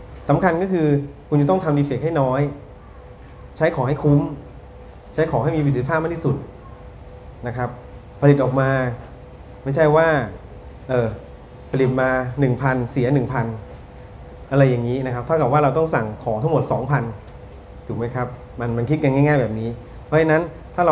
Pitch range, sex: 115-140 Hz, male